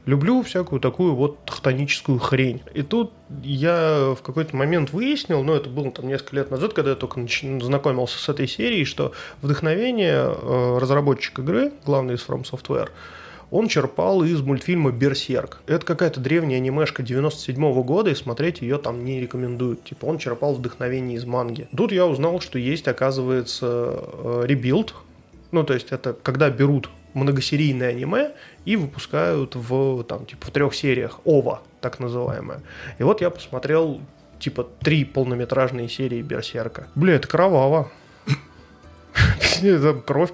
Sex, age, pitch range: male, 20-39, 125-150 Hz